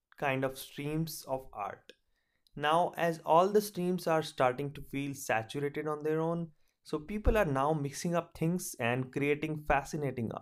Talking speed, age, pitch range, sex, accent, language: 160 wpm, 30-49, 130-180 Hz, male, Indian, English